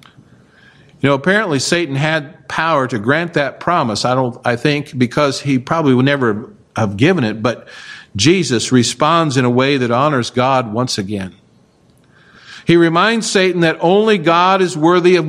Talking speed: 165 wpm